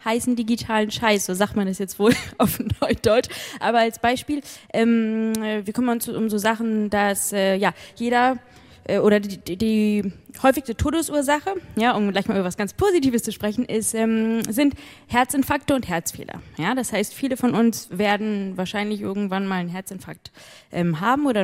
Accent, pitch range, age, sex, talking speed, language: German, 200-250 Hz, 20-39, female, 175 wpm, German